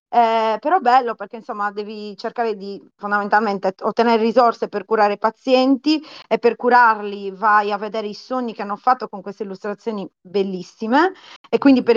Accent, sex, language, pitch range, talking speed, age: native, female, Italian, 205-245 Hz, 165 wpm, 30-49